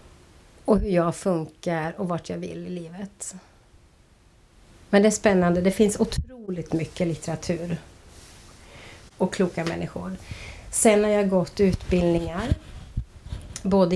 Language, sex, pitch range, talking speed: Swedish, female, 165-200 Hz, 120 wpm